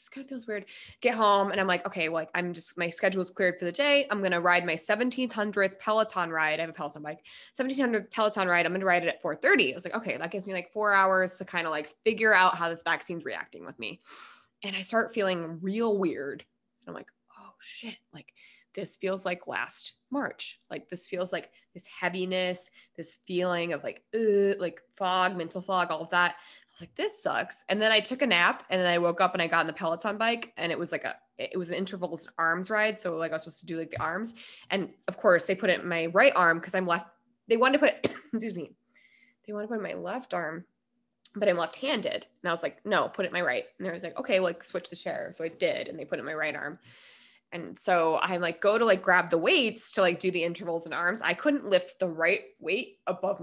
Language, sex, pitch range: English, female, 175-220 Hz